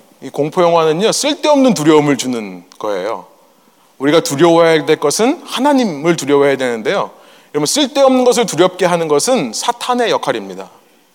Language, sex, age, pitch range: Korean, male, 30-49, 170-255 Hz